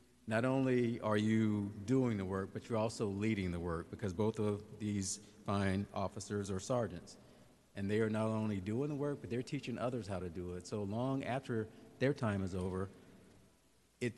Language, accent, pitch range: English, American, 100-120 Hz